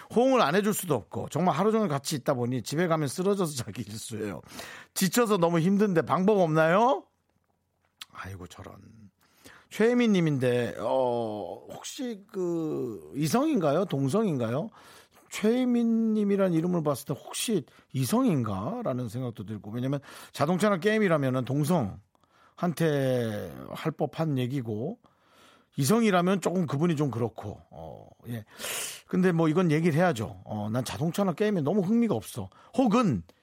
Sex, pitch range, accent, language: male, 125-200 Hz, native, Korean